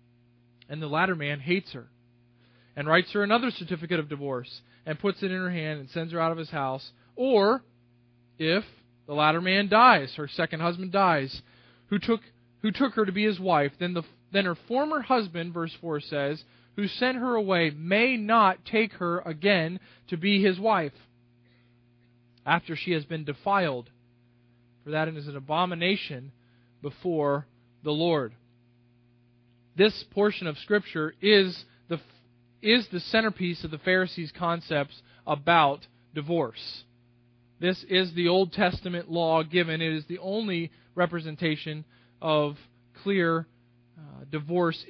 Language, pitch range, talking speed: English, 120-190 Hz, 150 wpm